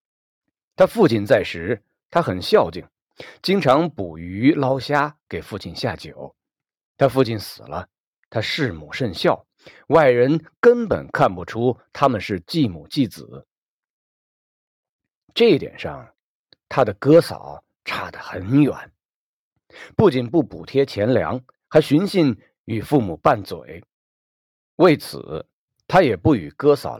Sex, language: male, Chinese